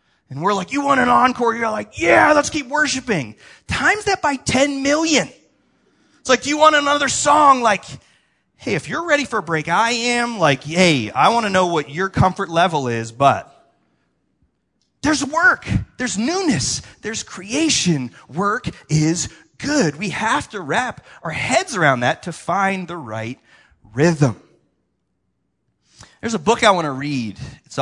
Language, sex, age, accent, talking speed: English, male, 30-49, American, 165 wpm